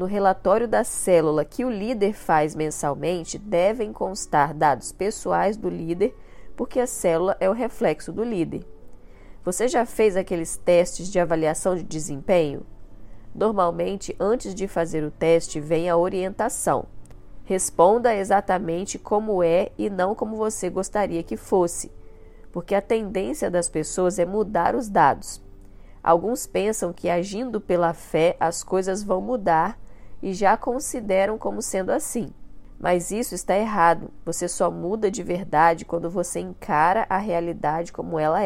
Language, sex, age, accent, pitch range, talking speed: Portuguese, female, 20-39, Brazilian, 155-195 Hz, 145 wpm